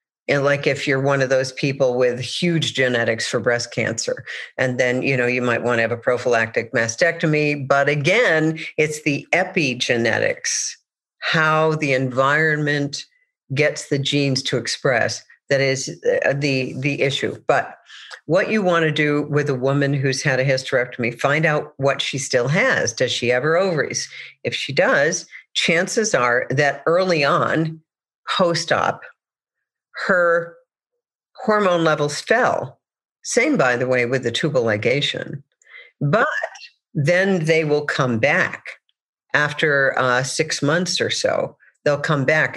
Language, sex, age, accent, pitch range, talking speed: English, female, 50-69, American, 135-170 Hz, 145 wpm